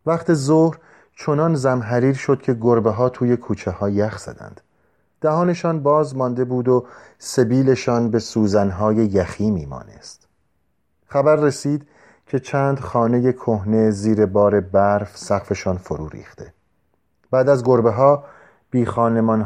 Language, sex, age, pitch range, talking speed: Persian, male, 40-59, 95-130 Hz, 130 wpm